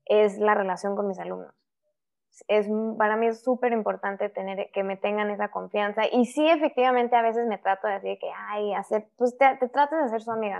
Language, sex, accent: Spanish, female, Mexican